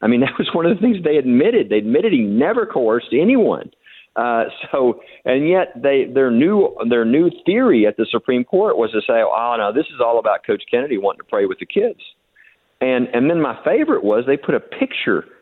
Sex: male